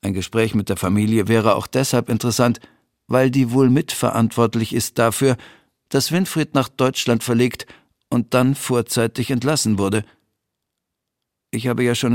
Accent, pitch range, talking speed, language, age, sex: German, 115-145 Hz, 145 wpm, German, 50-69, male